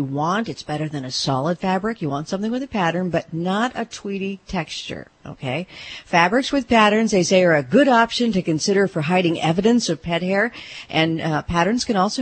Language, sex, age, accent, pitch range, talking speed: English, female, 50-69, American, 155-210 Hz, 200 wpm